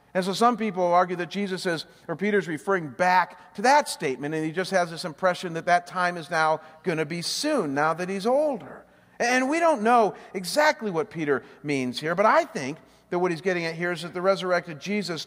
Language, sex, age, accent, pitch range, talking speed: English, male, 50-69, American, 170-220 Hz, 225 wpm